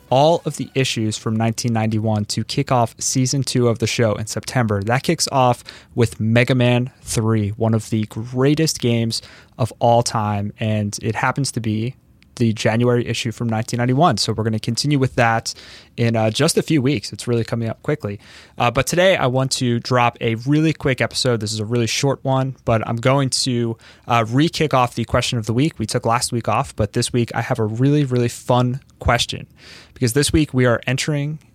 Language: English